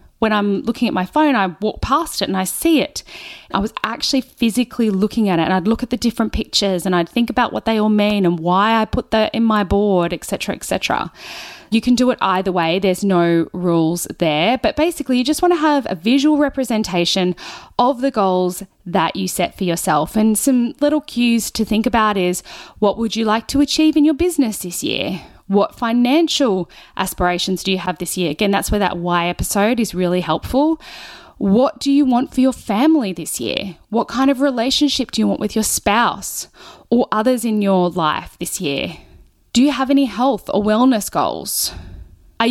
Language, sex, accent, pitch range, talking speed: English, female, Australian, 185-250 Hz, 205 wpm